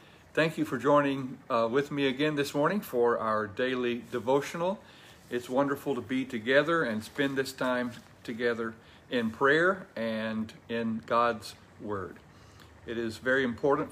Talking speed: 145 wpm